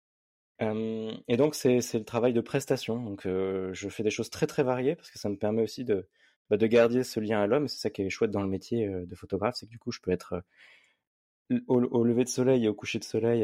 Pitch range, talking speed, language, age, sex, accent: 100-120 Hz, 265 wpm, French, 20-39, male, French